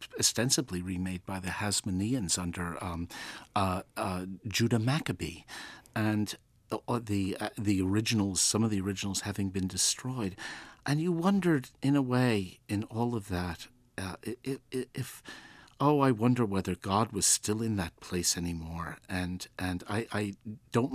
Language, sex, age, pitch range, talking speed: English, male, 50-69, 90-125 Hz, 150 wpm